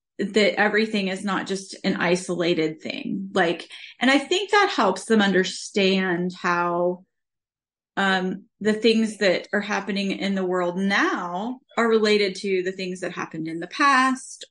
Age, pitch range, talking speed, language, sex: 30-49, 190-255 Hz, 155 wpm, English, female